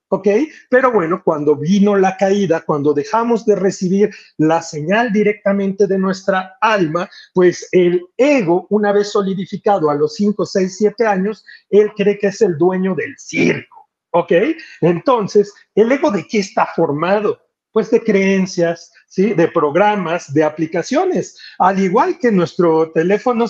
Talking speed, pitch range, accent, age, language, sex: 150 wpm, 170-225 Hz, Mexican, 40-59, Spanish, male